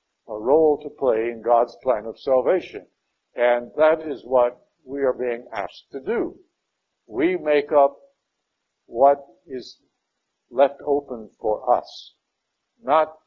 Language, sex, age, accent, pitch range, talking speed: English, male, 60-79, American, 115-150 Hz, 130 wpm